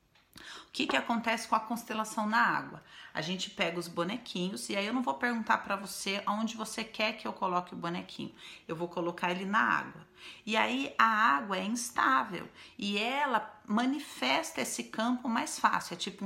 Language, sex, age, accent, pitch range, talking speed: Portuguese, female, 40-59, Brazilian, 200-245 Hz, 190 wpm